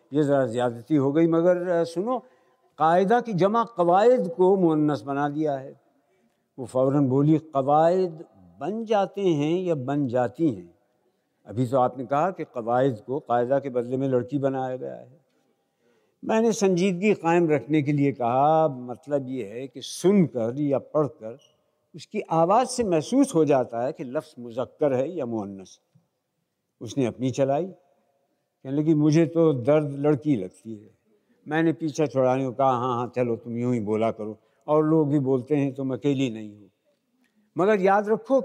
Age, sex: 60-79, male